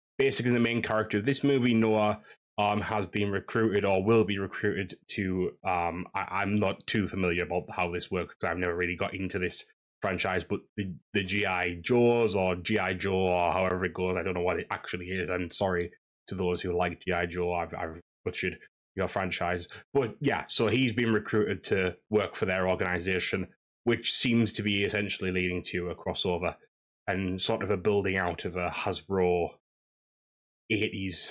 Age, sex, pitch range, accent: 10-29, male, 90-110 Hz, British